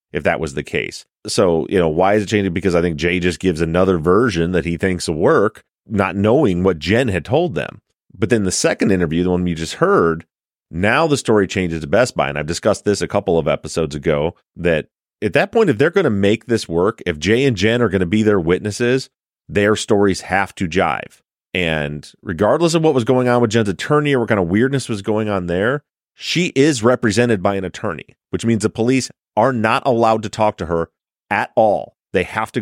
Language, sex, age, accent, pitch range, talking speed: English, male, 30-49, American, 90-115 Hz, 230 wpm